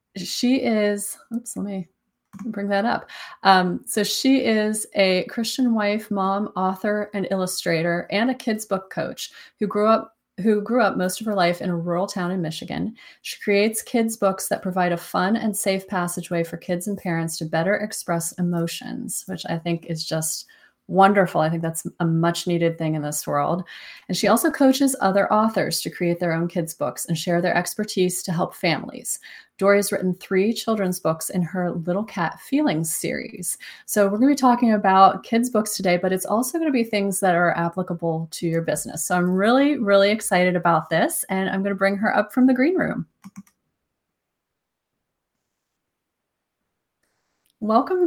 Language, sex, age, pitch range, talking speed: English, female, 30-49, 175-225 Hz, 185 wpm